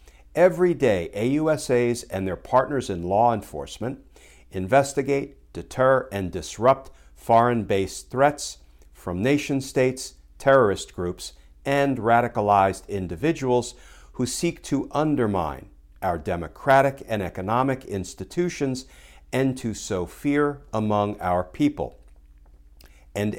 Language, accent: English, American